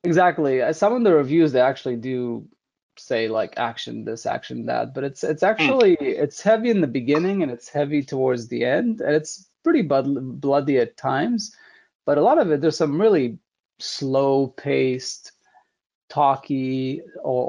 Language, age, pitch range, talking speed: English, 20-39, 125-155 Hz, 160 wpm